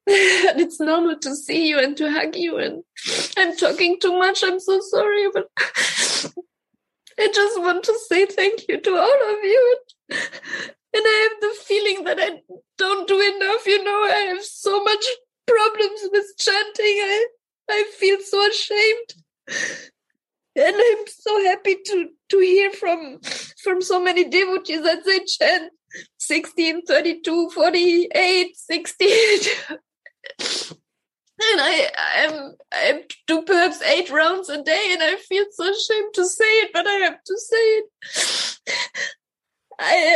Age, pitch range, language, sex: 20-39, 320-420 Hz, English, female